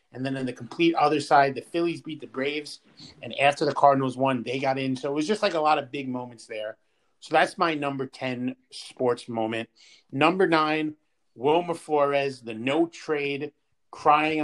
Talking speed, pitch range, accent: 190 wpm, 125-165 Hz, American